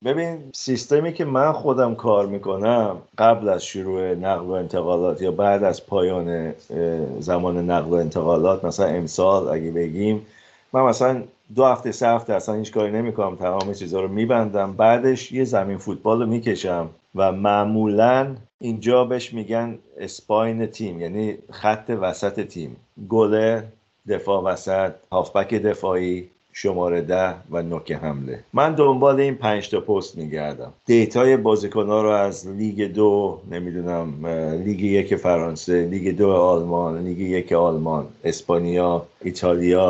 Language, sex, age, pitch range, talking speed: Persian, male, 50-69, 90-110 Hz, 135 wpm